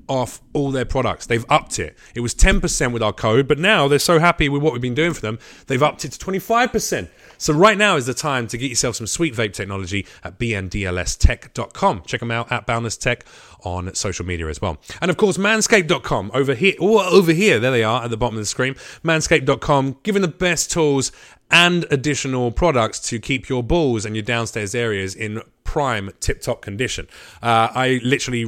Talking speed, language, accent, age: 205 wpm, English, British, 30-49